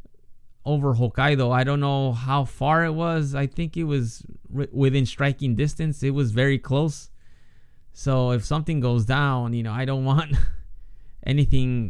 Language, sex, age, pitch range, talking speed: English, male, 20-39, 115-140 Hz, 155 wpm